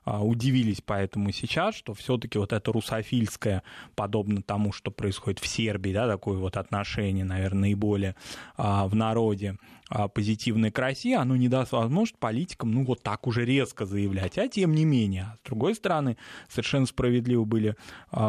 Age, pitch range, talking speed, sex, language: 20-39, 105-135 Hz, 160 wpm, male, Russian